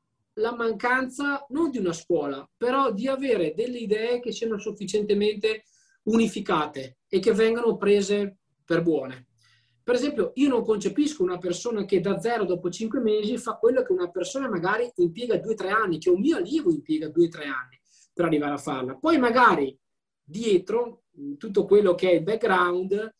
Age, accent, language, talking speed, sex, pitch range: 20-39, native, Italian, 175 wpm, male, 160-240 Hz